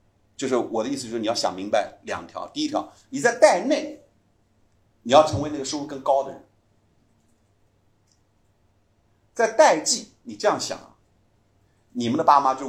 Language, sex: Chinese, male